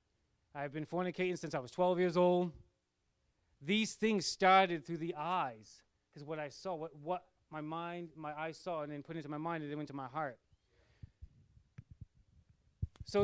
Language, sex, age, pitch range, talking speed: English, male, 30-49, 135-180 Hz, 175 wpm